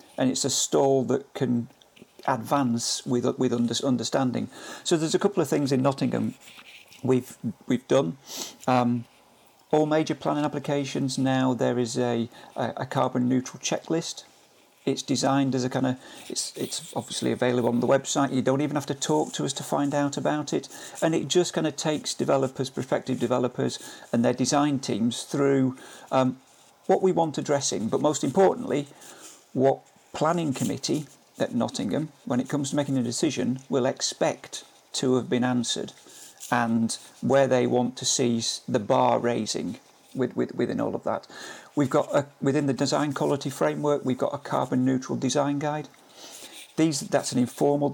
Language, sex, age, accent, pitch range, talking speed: English, male, 50-69, British, 125-145 Hz, 170 wpm